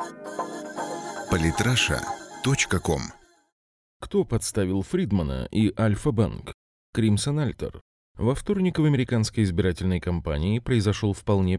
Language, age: Russian, 30-49